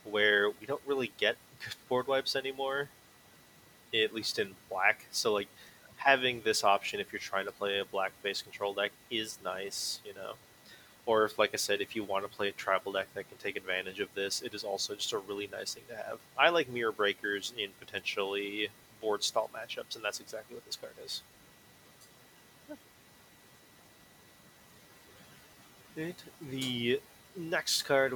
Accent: American